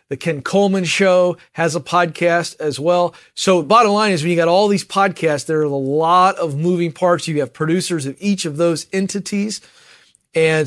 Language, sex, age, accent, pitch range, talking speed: English, male, 40-59, American, 150-185 Hz, 195 wpm